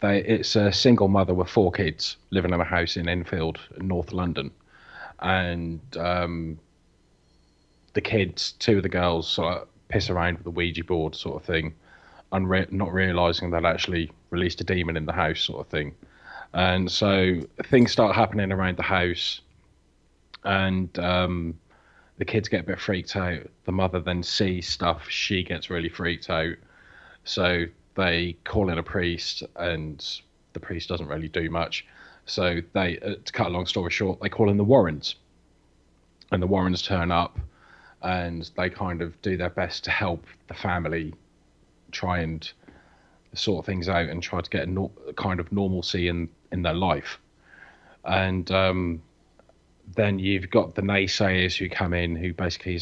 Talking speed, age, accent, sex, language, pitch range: 170 wpm, 30-49, British, male, English, 85-95 Hz